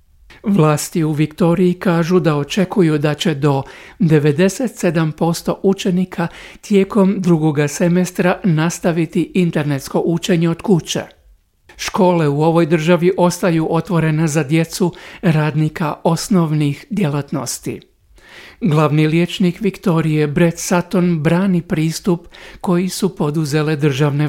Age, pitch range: 60-79, 145-180 Hz